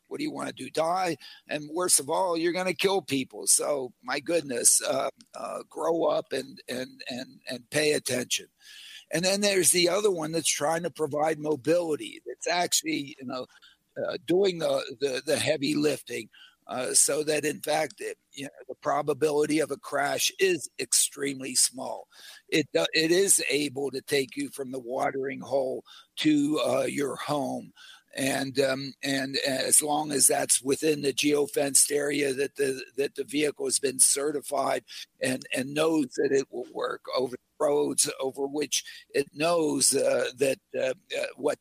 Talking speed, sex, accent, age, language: 170 wpm, male, American, 50-69, English